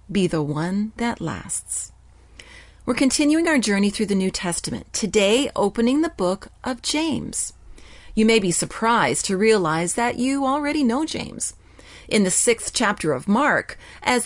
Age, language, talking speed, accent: 40-59, English, 155 wpm, American